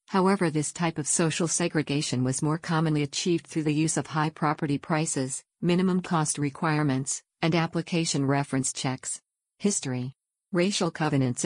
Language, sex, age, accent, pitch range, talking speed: English, female, 50-69, American, 145-170 Hz, 140 wpm